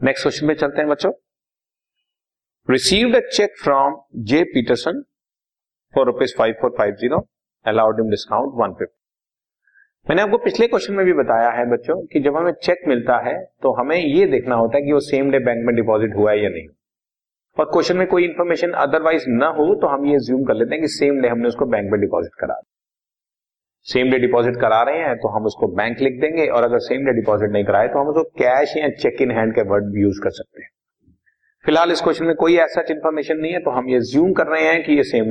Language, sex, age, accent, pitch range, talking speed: Hindi, male, 30-49, native, 115-175 Hz, 210 wpm